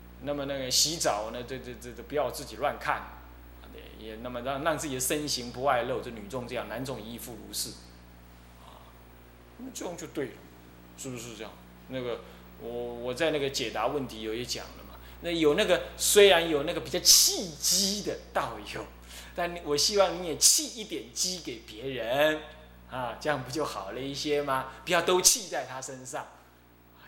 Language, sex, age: Chinese, male, 20-39